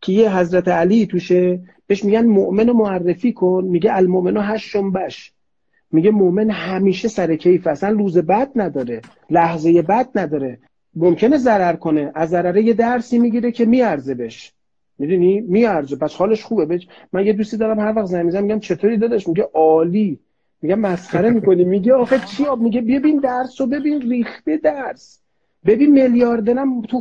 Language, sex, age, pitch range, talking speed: Persian, male, 40-59, 180-245 Hz, 160 wpm